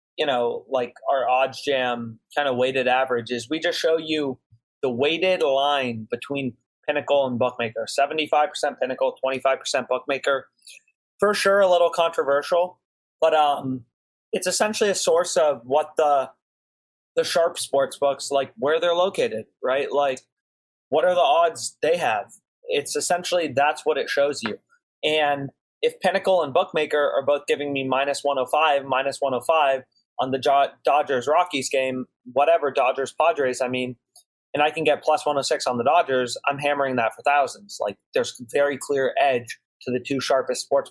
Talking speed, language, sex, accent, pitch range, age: 160 wpm, English, male, American, 130-165 Hz, 30-49